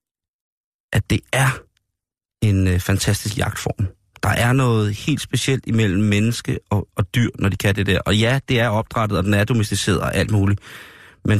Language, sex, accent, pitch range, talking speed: Danish, male, native, 100-120 Hz, 185 wpm